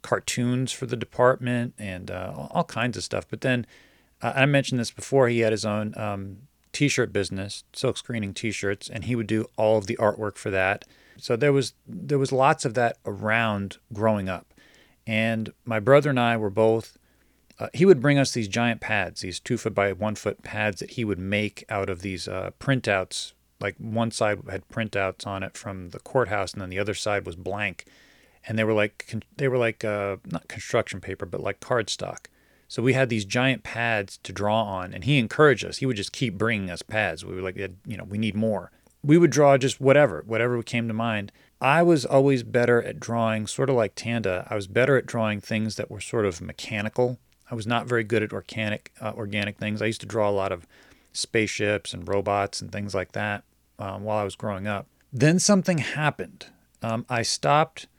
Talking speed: 210 wpm